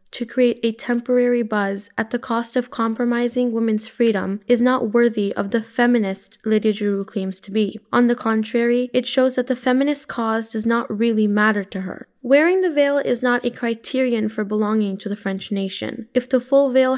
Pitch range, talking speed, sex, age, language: 210-245 Hz, 195 wpm, female, 10-29, English